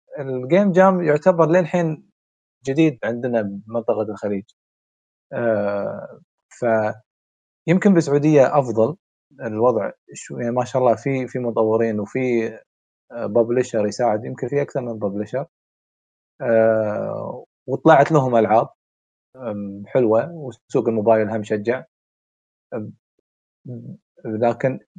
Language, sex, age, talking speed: Arabic, male, 20-39, 90 wpm